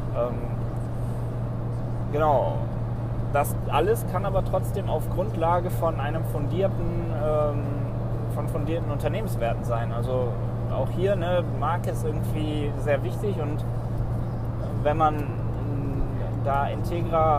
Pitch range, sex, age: 115-150 Hz, male, 20-39